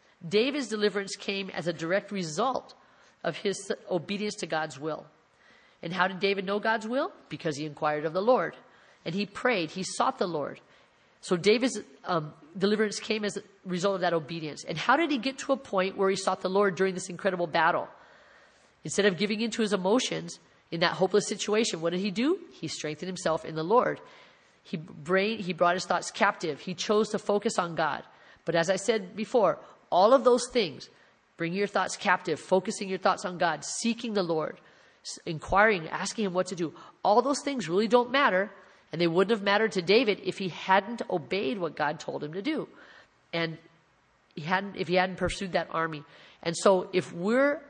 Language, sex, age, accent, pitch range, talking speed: English, female, 40-59, American, 170-210 Hz, 200 wpm